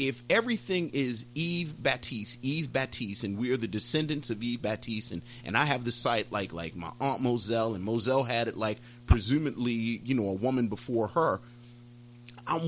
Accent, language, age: American, English, 40-59